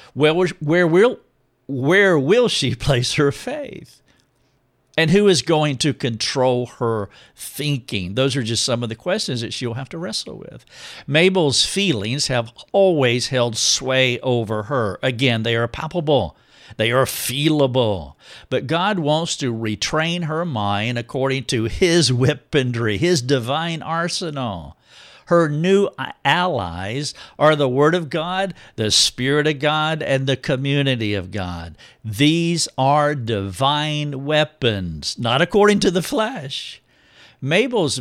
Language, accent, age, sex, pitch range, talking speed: English, American, 50-69, male, 120-155 Hz, 135 wpm